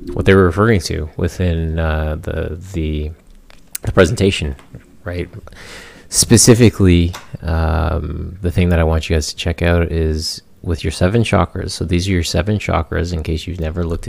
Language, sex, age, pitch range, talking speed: English, male, 30-49, 80-95 Hz, 170 wpm